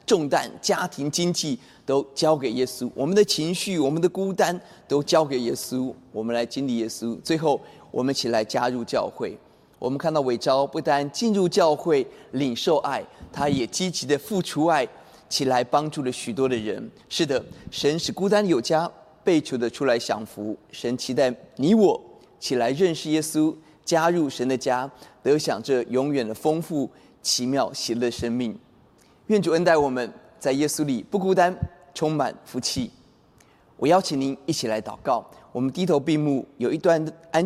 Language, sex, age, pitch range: Chinese, male, 30-49, 125-165 Hz